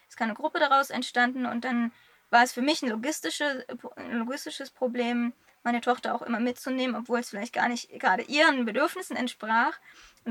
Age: 20-39